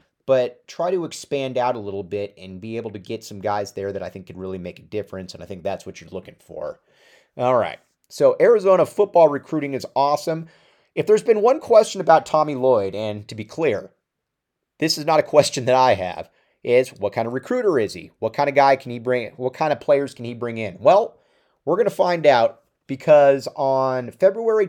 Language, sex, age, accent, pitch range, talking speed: English, male, 30-49, American, 105-155 Hz, 225 wpm